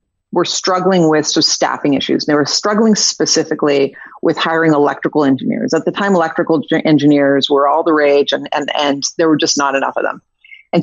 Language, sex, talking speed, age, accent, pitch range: English, female, 190 wpm, 40-59, American, 145-185 Hz